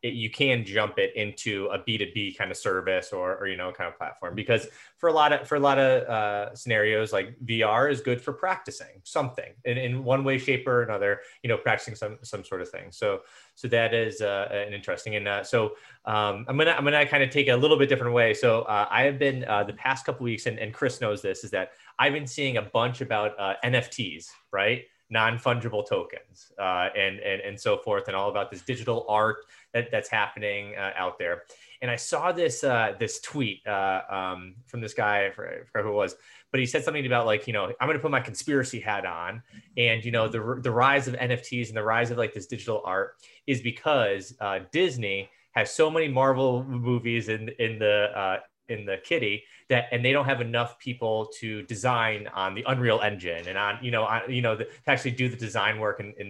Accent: American